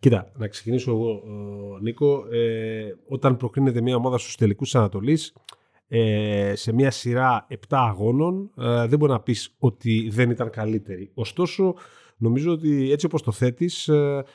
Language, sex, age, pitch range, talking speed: Greek, male, 30-49, 115-145 Hz, 160 wpm